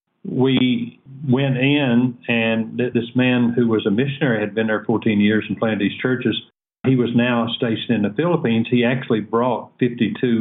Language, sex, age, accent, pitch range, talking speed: English, male, 50-69, American, 105-125 Hz, 175 wpm